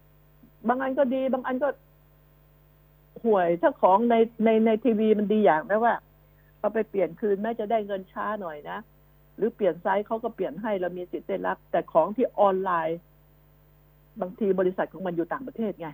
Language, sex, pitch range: Thai, female, 170-230 Hz